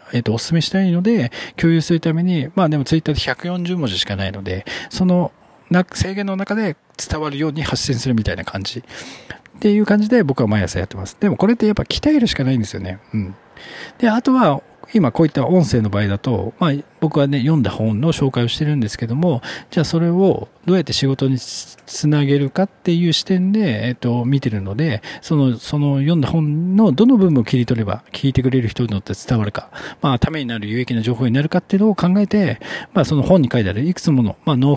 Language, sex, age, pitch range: Japanese, male, 40-59, 115-170 Hz